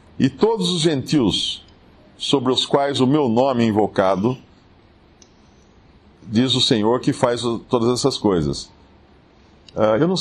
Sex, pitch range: male, 105-150 Hz